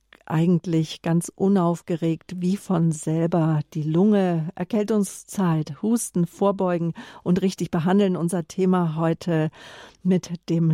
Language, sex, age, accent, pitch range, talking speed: German, female, 50-69, German, 160-185 Hz, 105 wpm